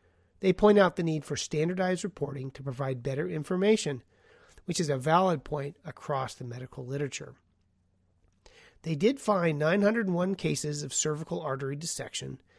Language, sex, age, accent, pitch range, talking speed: English, male, 40-59, American, 135-180 Hz, 145 wpm